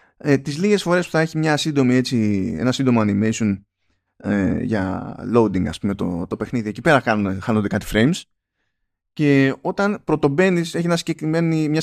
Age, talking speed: 20-39, 130 wpm